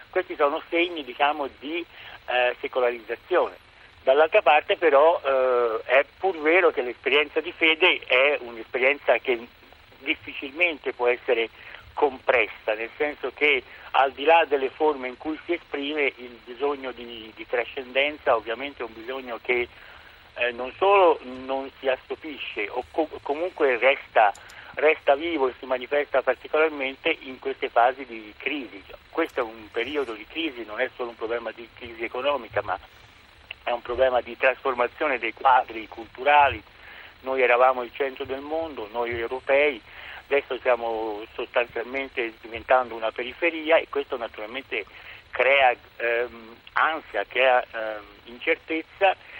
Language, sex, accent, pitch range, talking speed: Italian, male, native, 120-155 Hz, 140 wpm